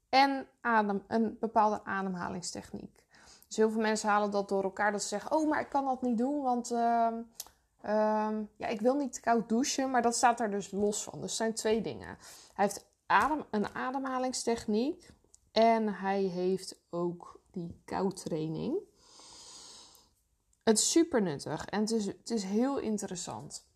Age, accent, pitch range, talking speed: 20-39, Dutch, 195-245 Hz, 170 wpm